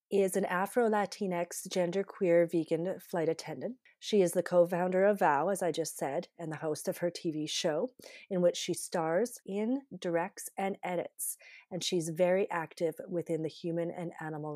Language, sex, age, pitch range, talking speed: English, female, 30-49, 165-190 Hz, 170 wpm